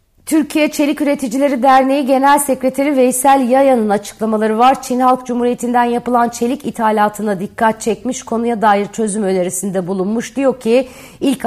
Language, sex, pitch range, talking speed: Turkish, female, 195-240 Hz, 135 wpm